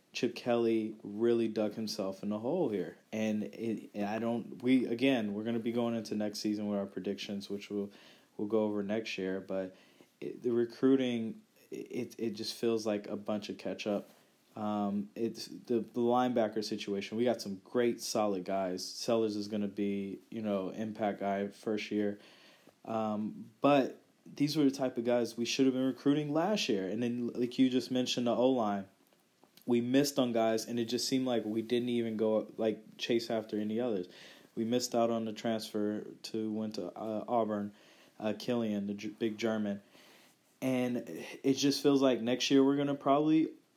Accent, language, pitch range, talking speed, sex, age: American, English, 105-120 Hz, 185 wpm, male, 20-39